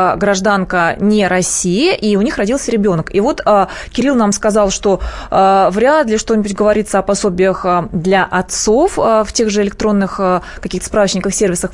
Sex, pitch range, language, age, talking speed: female, 195-245 Hz, Russian, 20-39, 175 wpm